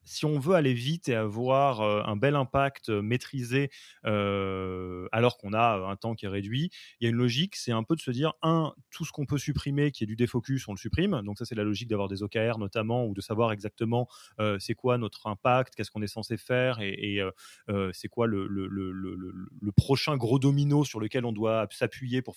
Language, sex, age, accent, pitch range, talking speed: French, male, 30-49, French, 110-140 Hz, 230 wpm